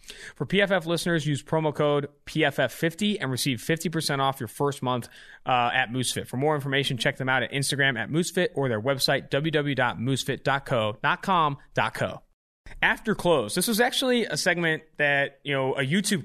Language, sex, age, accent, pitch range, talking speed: English, male, 30-49, American, 130-155 Hz, 160 wpm